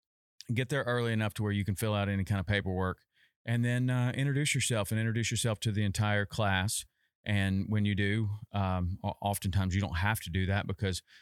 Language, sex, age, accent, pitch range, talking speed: English, male, 30-49, American, 100-115 Hz, 210 wpm